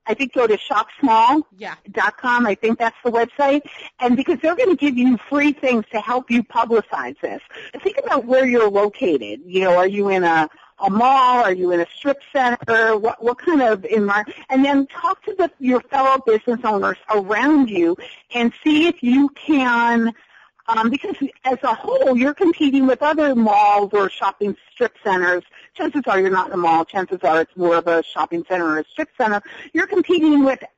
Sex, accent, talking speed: female, American, 195 wpm